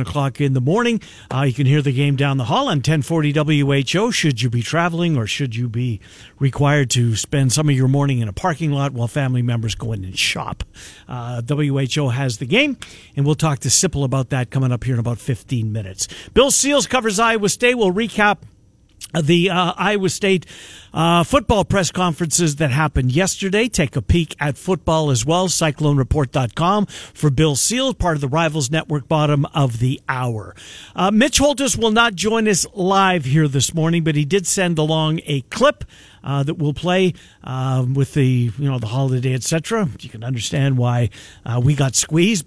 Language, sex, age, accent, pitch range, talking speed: English, male, 50-69, American, 130-180 Hz, 190 wpm